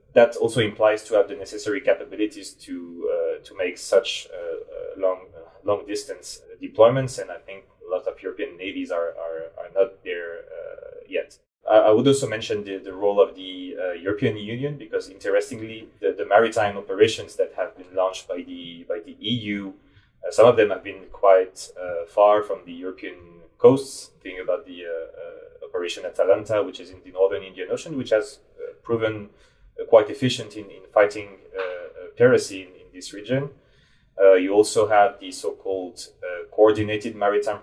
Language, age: English, 30-49